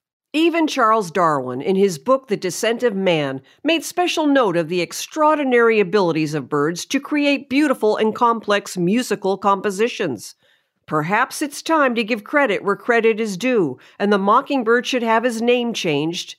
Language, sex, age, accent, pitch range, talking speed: English, female, 50-69, American, 170-245 Hz, 160 wpm